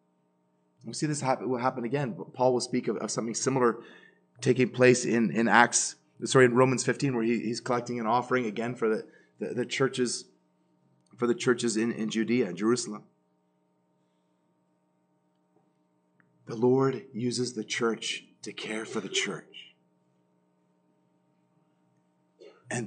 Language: English